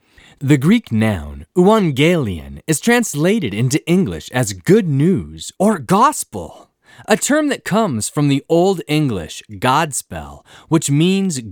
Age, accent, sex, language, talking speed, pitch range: 20-39, American, male, English, 125 wpm, 115-190 Hz